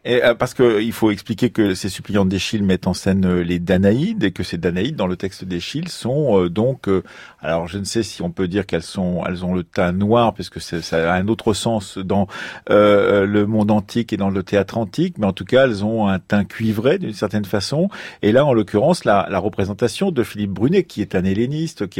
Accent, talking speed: French, 225 wpm